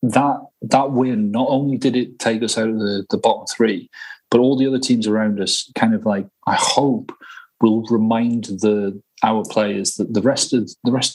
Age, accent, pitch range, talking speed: 30-49, British, 110-135 Hz, 205 wpm